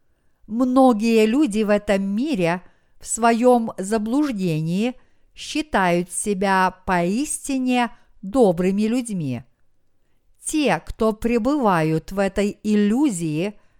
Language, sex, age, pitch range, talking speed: Russian, female, 50-69, 180-245 Hz, 85 wpm